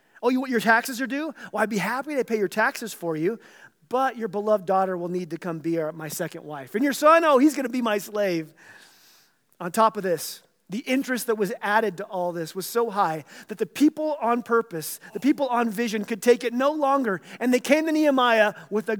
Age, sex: 30-49, male